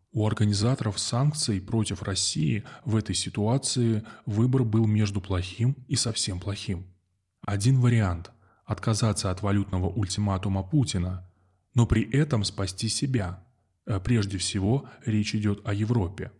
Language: Russian